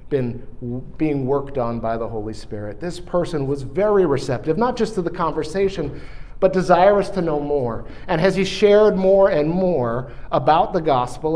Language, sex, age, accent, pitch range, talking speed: English, male, 50-69, American, 120-165 Hz, 175 wpm